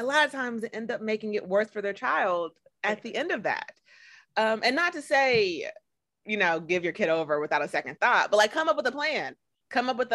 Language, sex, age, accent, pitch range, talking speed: English, female, 30-49, American, 185-260 Hz, 255 wpm